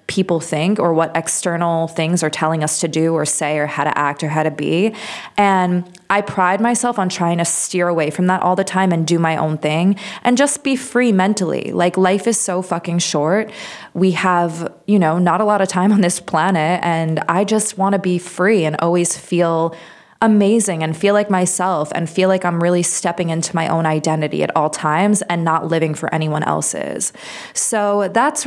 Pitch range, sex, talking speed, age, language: 165-200 Hz, female, 210 wpm, 20-39, English